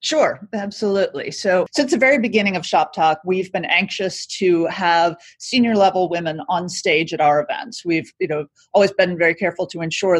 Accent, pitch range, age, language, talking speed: American, 170-210 Hz, 40-59, English, 190 wpm